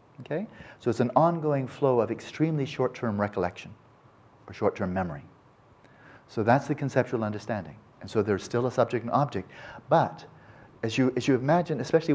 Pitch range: 110-130 Hz